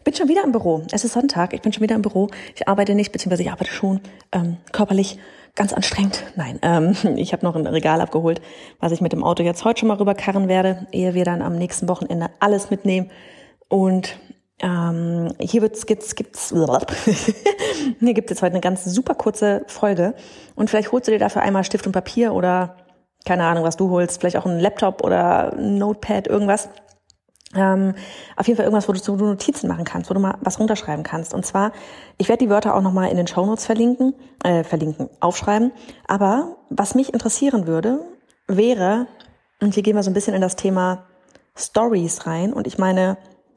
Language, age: German, 30-49